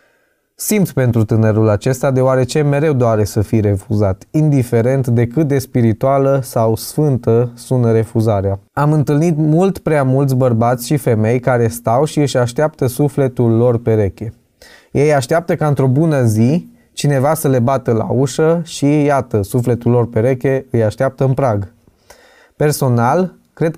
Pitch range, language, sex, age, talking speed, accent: 115-140 Hz, Romanian, male, 20-39, 145 wpm, native